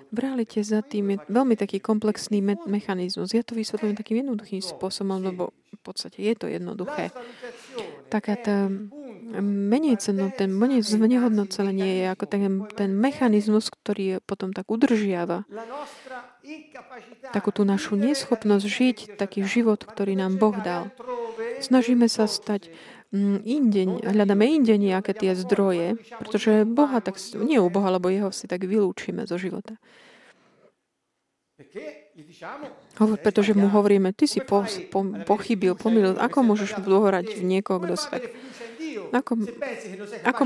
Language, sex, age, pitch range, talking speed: Slovak, female, 30-49, 195-235 Hz, 130 wpm